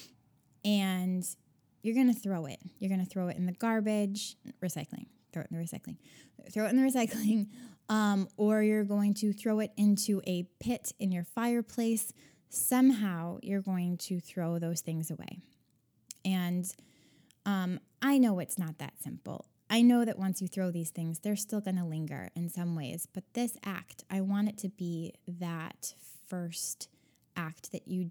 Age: 10-29